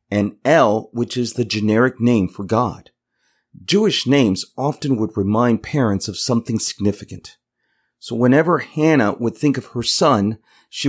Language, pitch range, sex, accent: English, 110-140 Hz, male, American